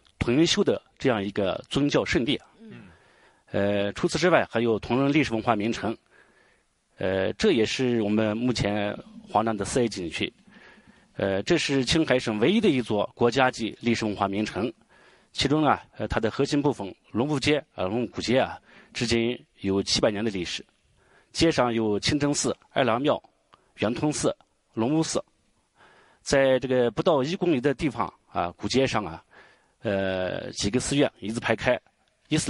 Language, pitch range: Chinese, 100-130 Hz